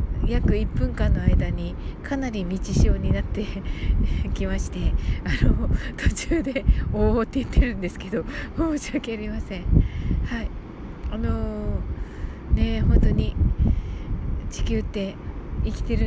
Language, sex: Japanese, female